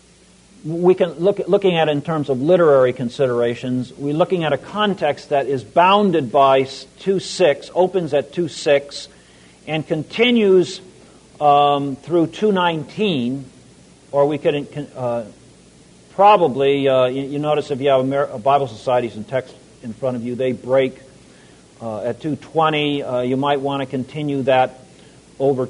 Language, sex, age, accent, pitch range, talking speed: English, male, 50-69, American, 130-180 Hz, 160 wpm